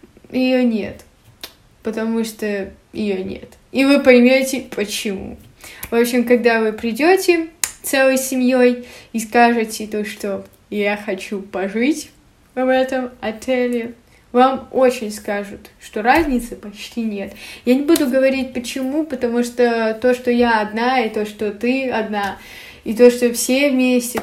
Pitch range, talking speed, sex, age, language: 220-265 Hz, 135 wpm, female, 20-39, Russian